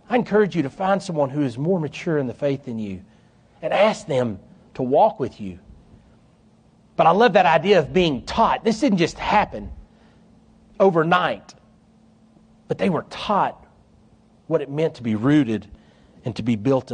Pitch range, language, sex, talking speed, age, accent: 115-175 Hz, English, male, 175 wpm, 40-59, American